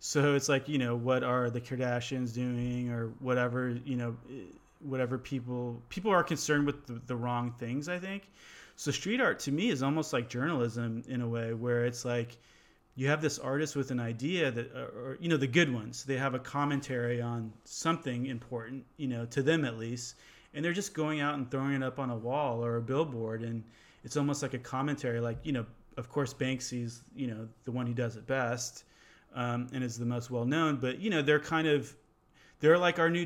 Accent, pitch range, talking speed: American, 120-145 Hz, 215 wpm